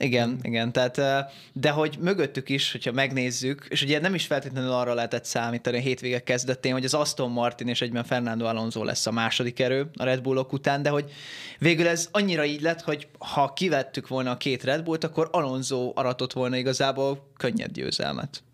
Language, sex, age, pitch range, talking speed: Hungarian, male, 20-39, 125-150 Hz, 190 wpm